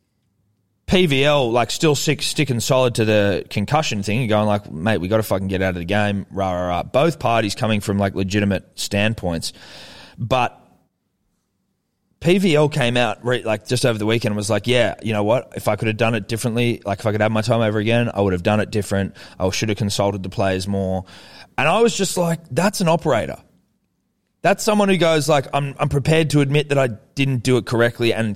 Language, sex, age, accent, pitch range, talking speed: English, male, 20-39, Australian, 100-135 Hz, 220 wpm